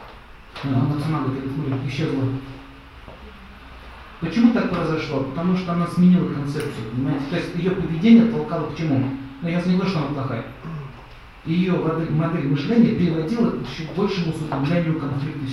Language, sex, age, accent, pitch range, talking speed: Russian, male, 50-69, native, 135-180 Hz, 145 wpm